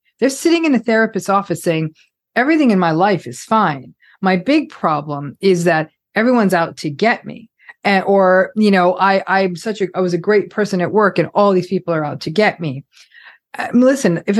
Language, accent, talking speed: English, American, 215 wpm